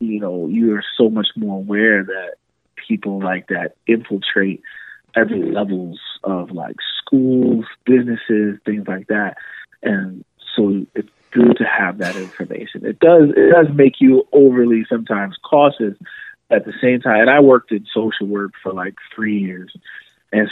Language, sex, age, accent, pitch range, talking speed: English, male, 30-49, American, 95-115 Hz, 155 wpm